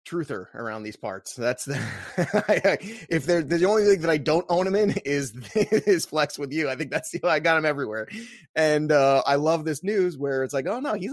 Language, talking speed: English, 225 wpm